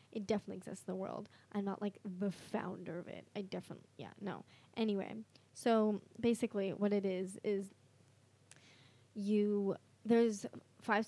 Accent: American